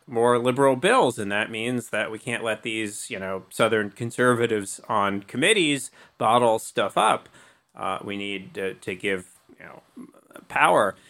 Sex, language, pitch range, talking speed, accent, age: male, English, 110-145 Hz, 155 wpm, American, 30-49